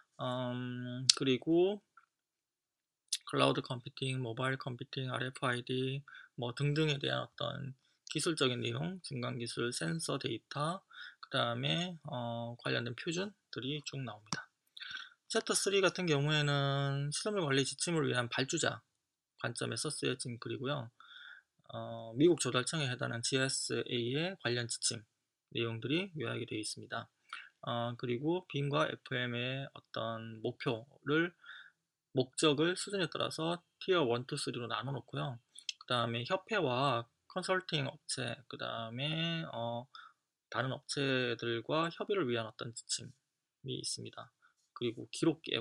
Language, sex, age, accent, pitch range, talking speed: English, male, 20-39, Korean, 120-155 Hz, 105 wpm